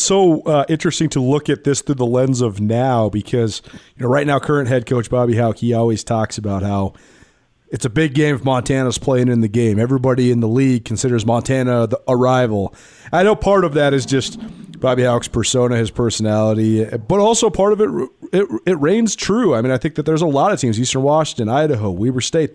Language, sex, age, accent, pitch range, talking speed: English, male, 30-49, American, 115-155 Hz, 215 wpm